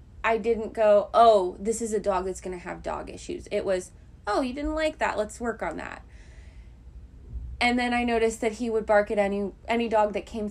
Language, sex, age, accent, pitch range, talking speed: English, female, 20-39, American, 180-225 Hz, 225 wpm